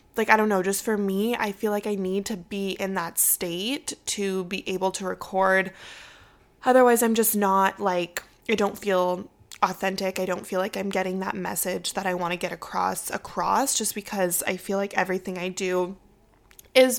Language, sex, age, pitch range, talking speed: English, female, 20-39, 180-205 Hz, 195 wpm